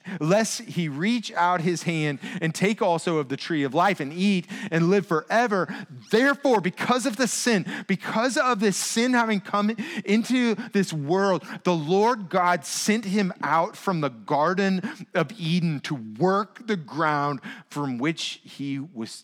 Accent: American